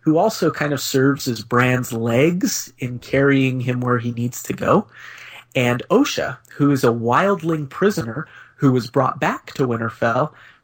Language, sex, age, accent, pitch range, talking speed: English, male, 30-49, American, 120-145 Hz, 165 wpm